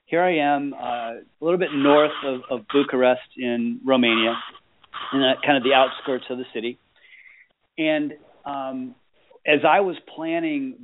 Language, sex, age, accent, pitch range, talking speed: English, male, 40-59, American, 120-145 Hz, 155 wpm